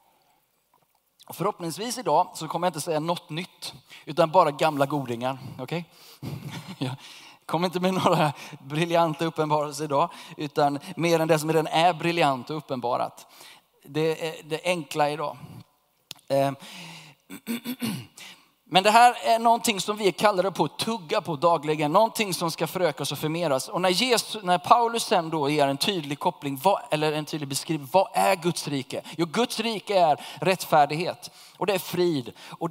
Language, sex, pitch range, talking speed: Swedish, male, 150-185 Hz, 160 wpm